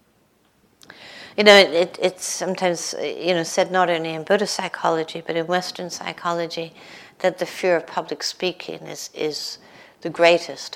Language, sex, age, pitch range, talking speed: English, female, 60-79, 170-205 Hz, 150 wpm